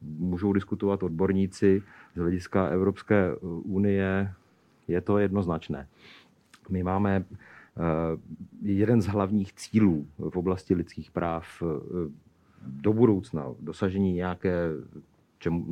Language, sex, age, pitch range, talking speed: Slovak, male, 50-69, 85-100 Hz, 95 wpm